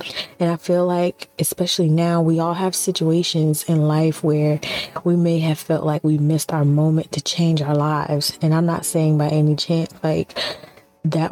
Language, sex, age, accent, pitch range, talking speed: English, female, 20-39, American, 155-180 Hz, 185 wpm